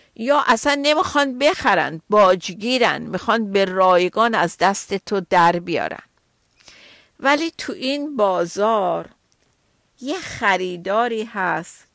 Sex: female